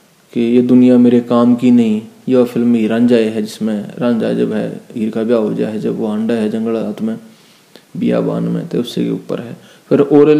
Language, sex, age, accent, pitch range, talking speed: Hindi, male, 20-39, native, 120-135 Hz, 215 wpm